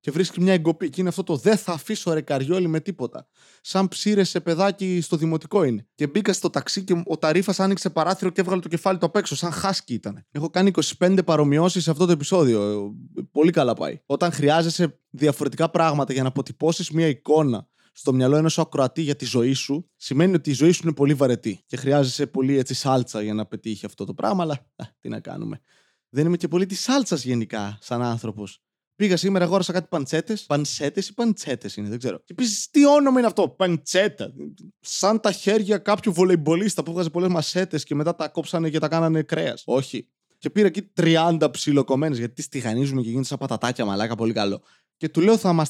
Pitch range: 130-180 Hz